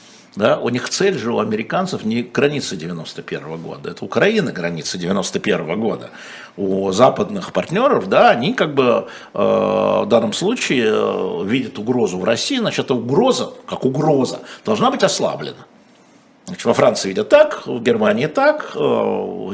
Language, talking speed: Russian, 145 wpm